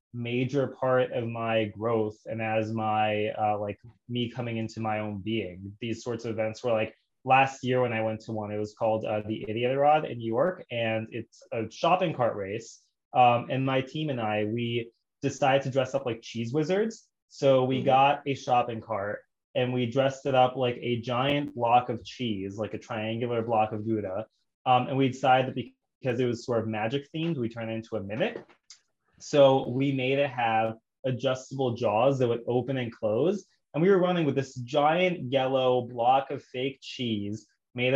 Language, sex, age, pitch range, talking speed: English, male, 20-39, 110-135 Hz, 200 wpm